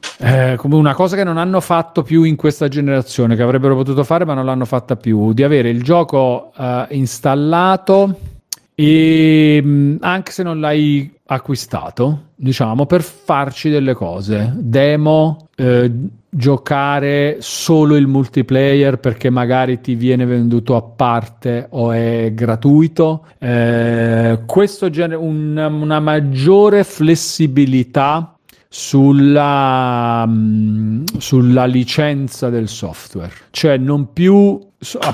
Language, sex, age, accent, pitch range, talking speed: Italian, male, 40-59, native, 120-155 Hz, 120 wpm